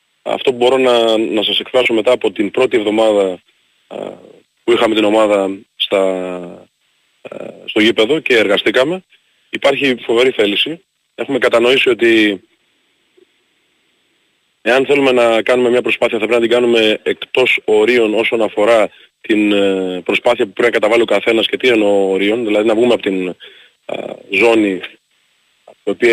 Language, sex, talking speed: Greek, male, 145 wpm